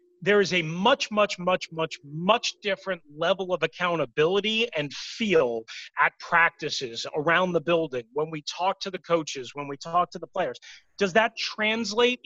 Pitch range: 155-215 Hz